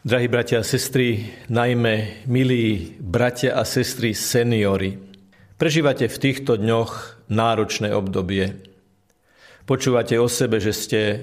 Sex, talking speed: male, 110 wpm